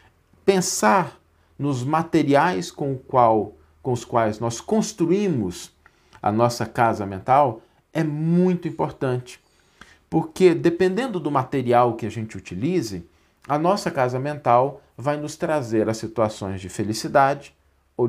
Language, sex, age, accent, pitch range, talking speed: Portuguese, male, 50-69, Brazilian, 110-155 Hz, 125 wpm